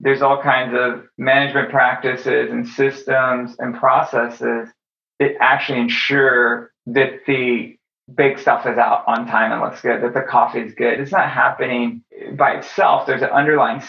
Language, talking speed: English, 160 wpm